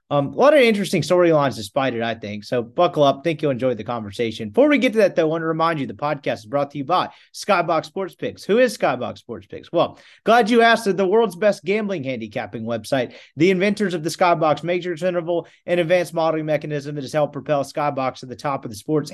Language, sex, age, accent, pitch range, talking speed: English, male, 30-49, American, 140-180 Hz, 240 wpm